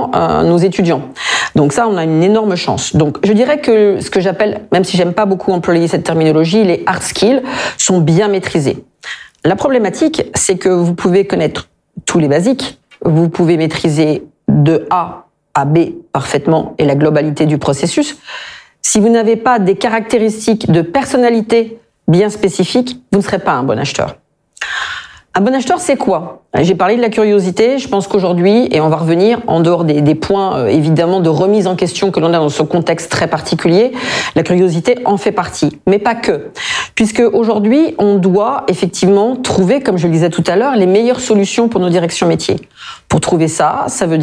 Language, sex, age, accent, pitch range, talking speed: French, female, 40-59, French, 165-220 Hz, 190 wpm